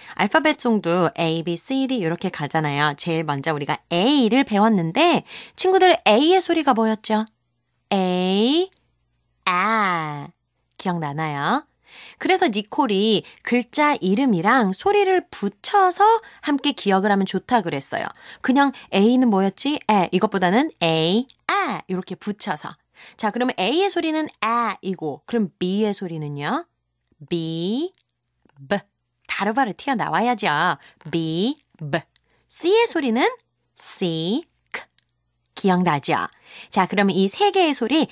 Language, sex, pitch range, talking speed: English, female, 165-260 Hz, 100 wpm